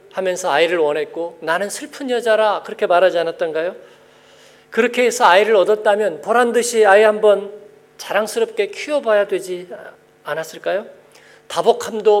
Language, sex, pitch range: Korean, male, 195-310 Hz